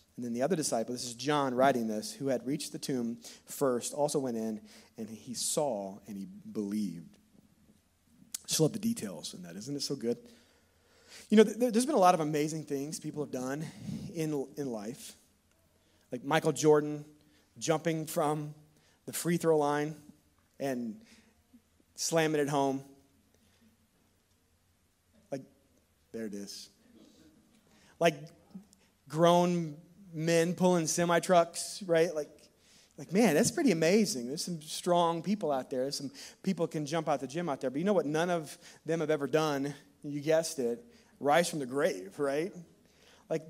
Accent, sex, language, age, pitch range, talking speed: American, male, English, 30-49, 135-180 Hz, 160 wpm